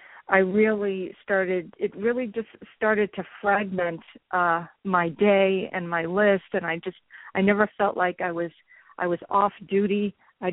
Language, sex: English, female